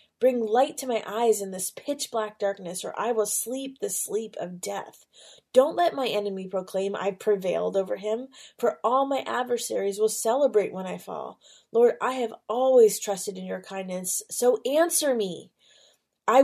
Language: English